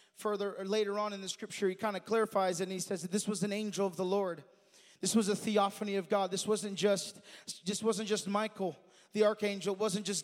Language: English